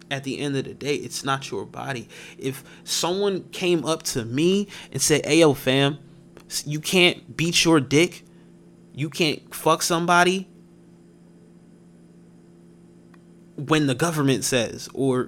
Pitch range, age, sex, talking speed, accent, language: 110-155 Hz, 20-39, male, 135 wpm, American, English